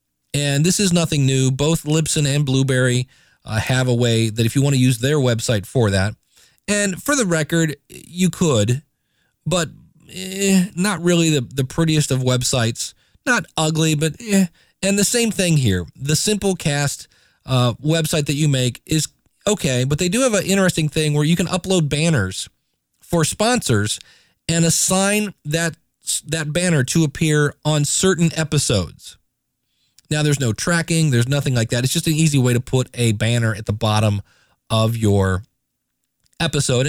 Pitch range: 125-165 Hz